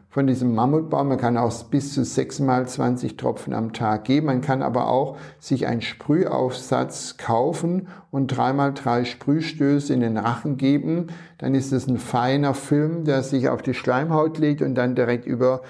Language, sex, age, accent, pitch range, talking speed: German, male, 60-79, German, 120-150 Hz, 170 wpm